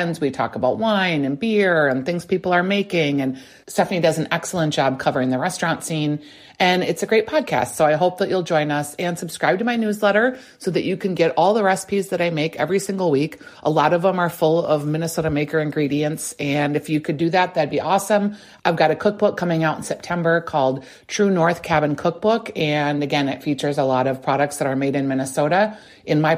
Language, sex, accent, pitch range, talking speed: English, female, American, 150-190 Hz, 225 wpm